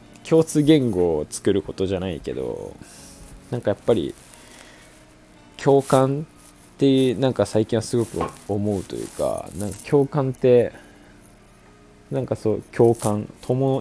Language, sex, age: Japanese, male, 20-39